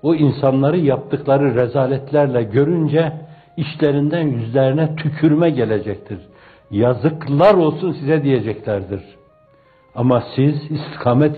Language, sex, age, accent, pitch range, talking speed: Turkish, male, 60-79, native, 120-150 Hz, 85 wpm